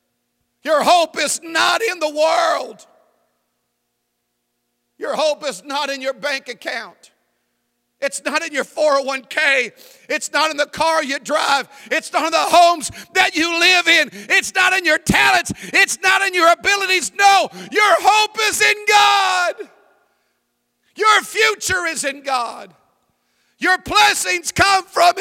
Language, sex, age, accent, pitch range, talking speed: English, male, 50-69, American, 260-375 Hz, 145 wpm